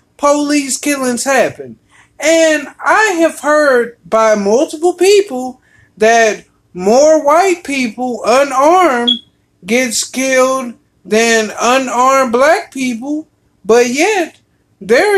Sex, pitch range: male, 240-315 Hz